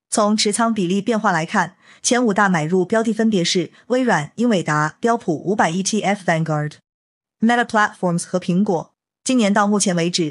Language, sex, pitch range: Chinese, female, 175-225 Hz